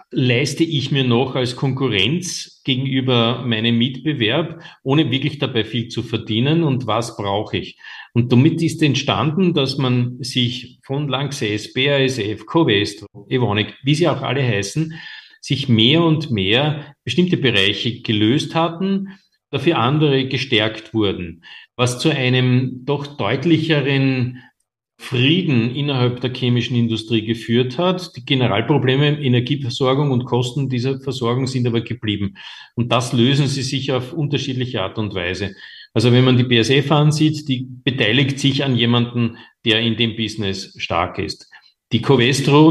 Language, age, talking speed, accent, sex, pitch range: German, 50-69, 140 wpm, Austrian, male, 115-140 Hz